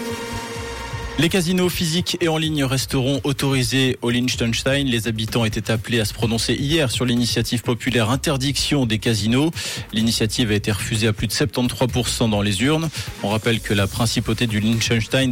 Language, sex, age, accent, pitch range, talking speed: French, male, 20-39, French, 115-135 Hz, 165 wpm